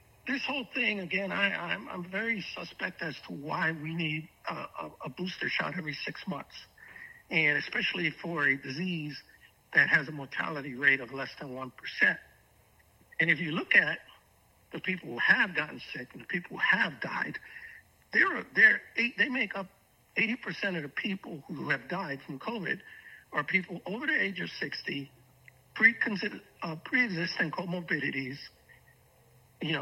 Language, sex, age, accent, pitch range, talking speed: English, male, 60-79, American, 140-195 Hz, 150 wpm